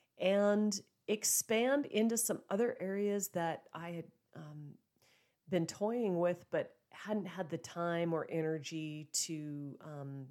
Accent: American